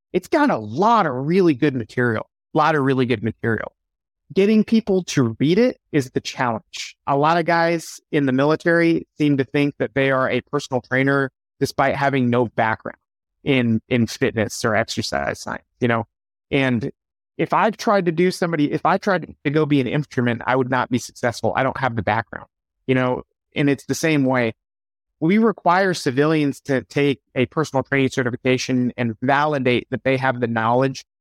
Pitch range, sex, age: 125-155 Hz, male, 30-49